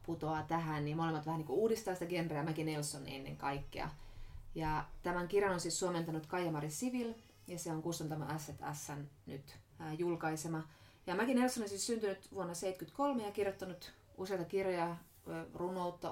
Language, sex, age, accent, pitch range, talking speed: Finnish, female, 20-39, native, 145-180 Hz, 160 wpm